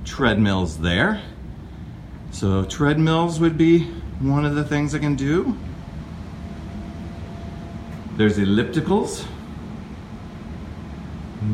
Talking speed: 85 wpm